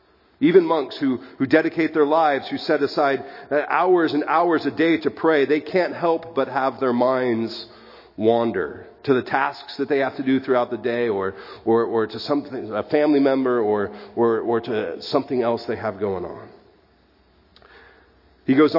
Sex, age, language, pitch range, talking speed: male, 40-59, English, 120-160 Hz, 175 wpm